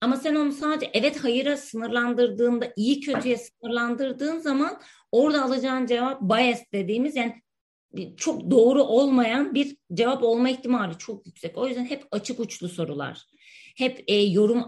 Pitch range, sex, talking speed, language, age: 200-260 Hz, female, 140 wpm, Turkish, 30-49